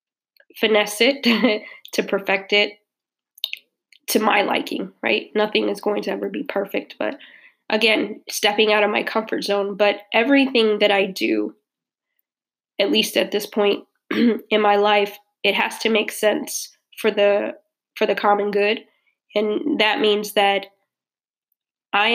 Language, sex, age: English, female, 10-29